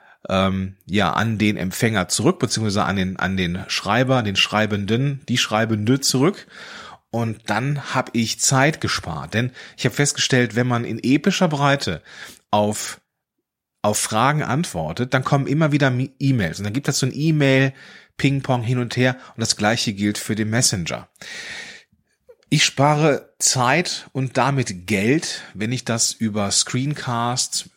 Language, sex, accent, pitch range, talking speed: German, male, German, 105-140 Hz, 150 wpm